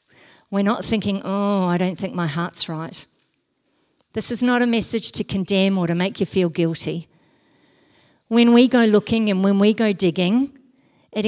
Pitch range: 165-220 Hz